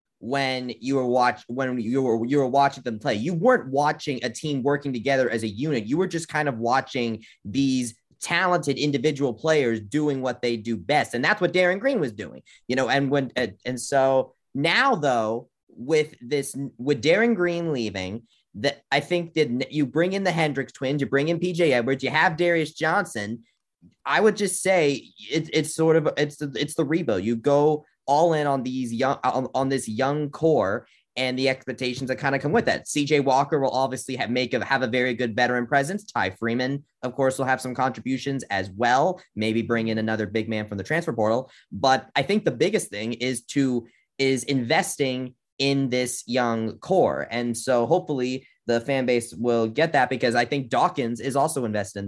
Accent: American